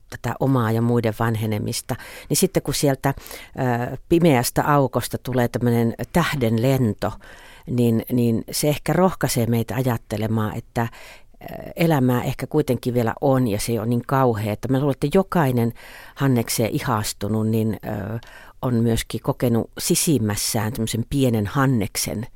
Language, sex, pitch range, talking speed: Finnish, female, 110-130 Hz, 125 wpm